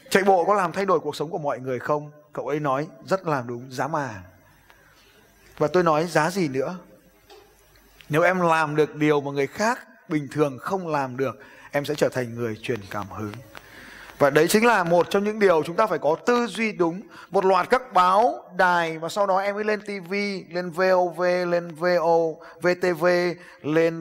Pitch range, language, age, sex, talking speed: 135-180 Hz, Vietnamese, 20-39, male, 195 wpm